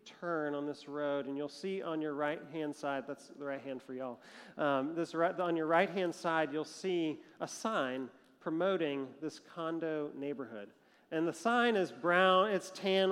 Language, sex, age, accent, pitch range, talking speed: English, male, 40-59, American, 150-205 Hz, 180 wpm